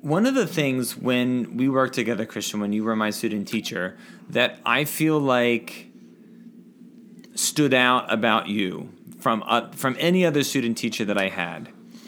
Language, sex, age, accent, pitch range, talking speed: English, male, 30-49, American, 115-155 Hz, 165 wpm